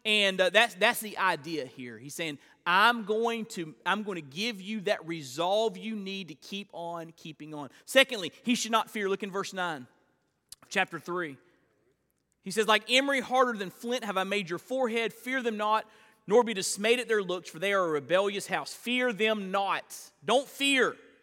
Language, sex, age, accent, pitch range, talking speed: English, male, 30-49, American, 165-225 Hz, 190 wpm